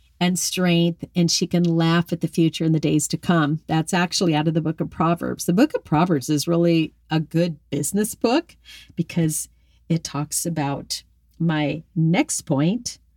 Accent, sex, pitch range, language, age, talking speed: American, female, 155-235 Hz, English, 40-59, 180 wpm